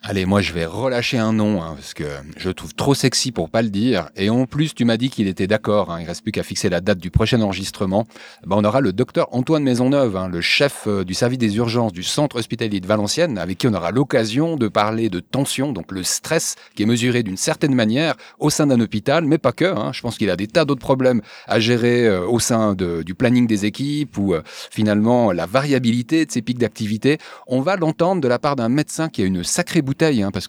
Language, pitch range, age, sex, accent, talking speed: French, 105-140 Hz, 30-49, male, French, 245 wpm